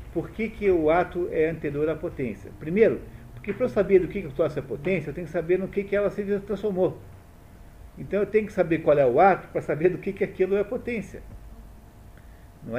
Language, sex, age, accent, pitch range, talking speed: Portuguese, male, 50-69, Brazilian, 115-195 Hz, 230 wpm